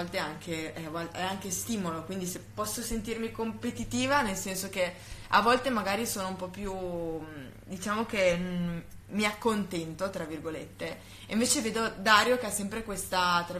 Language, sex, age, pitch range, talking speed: Italian, female, 20-39, 170-205 Hz, 155 wpm